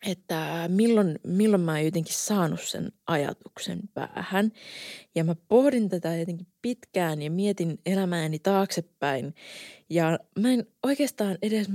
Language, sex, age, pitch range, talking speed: Finnish, female, 20-39, 155-205 Hz, 130 wpm